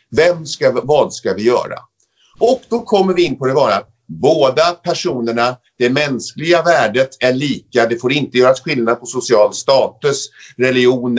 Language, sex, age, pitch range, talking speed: English, male, 50-69, 115-165 Hz, 160 wpm